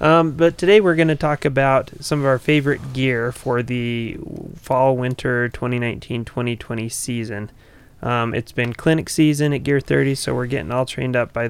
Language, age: English, 20-39